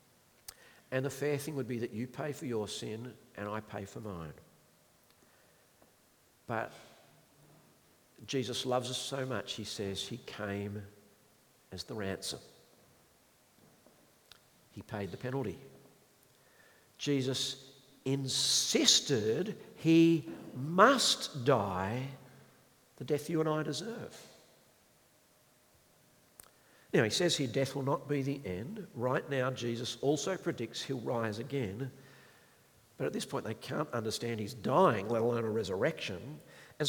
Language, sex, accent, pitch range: English, male, Australian, 120-165 Hz